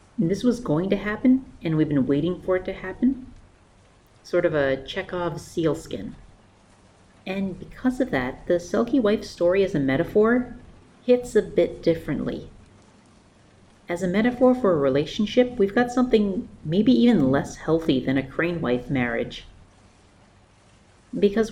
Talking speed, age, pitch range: 150 wpm, 40-59, 130-195 Hz